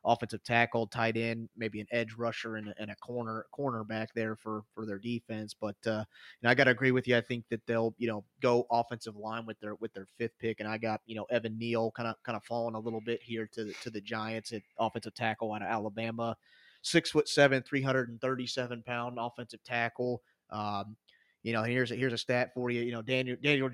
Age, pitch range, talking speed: 30-49, 115-130 Hz, 240 wpm